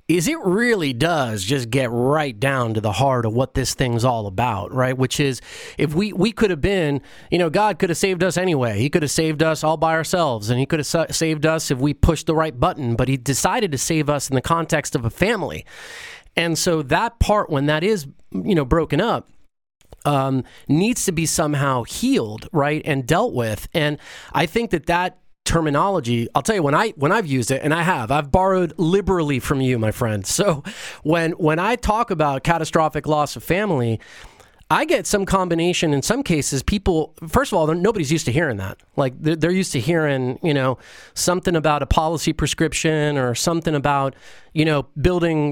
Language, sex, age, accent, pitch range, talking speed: English, male, 30-49, American, 135-175 Hz, 205 wpm